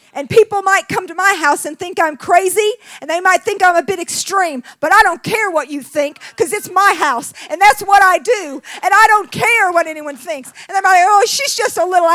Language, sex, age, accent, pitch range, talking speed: English, female, 40-59, American, 340-415 Hz, 245 wpm